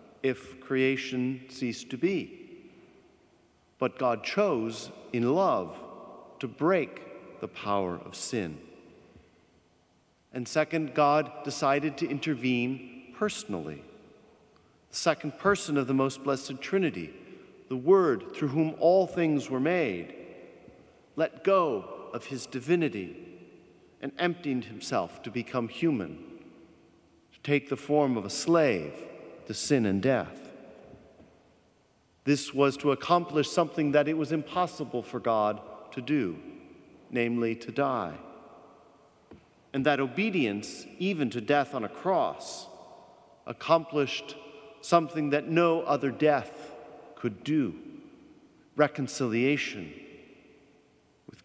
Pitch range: 120-160 Hz